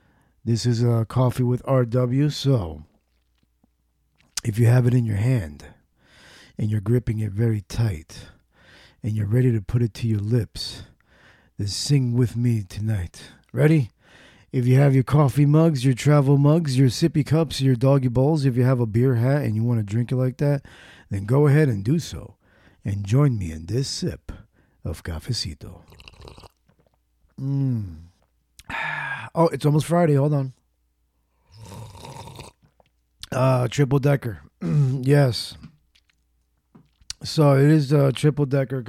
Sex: male